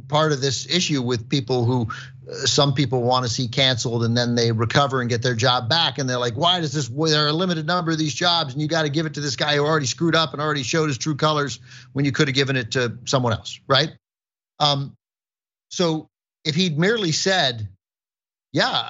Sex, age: male, 50-69